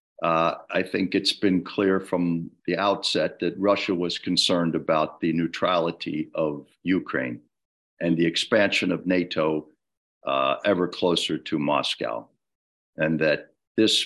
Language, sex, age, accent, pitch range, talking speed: English, male, 50-69, American, 85-95 Hz, 130 wpm